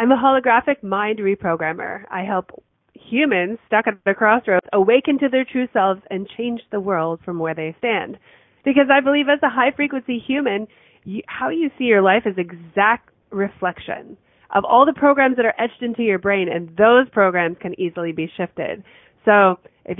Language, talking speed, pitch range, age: English, 185 wpm, 185-260 Hz, 30-49